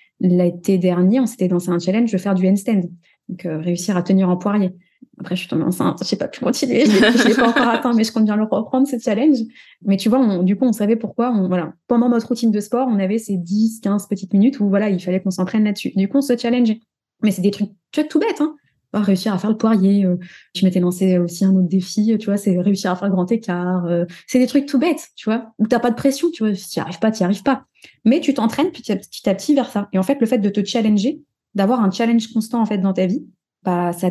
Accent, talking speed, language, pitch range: French, 270 wpm, French, 190-235 Hz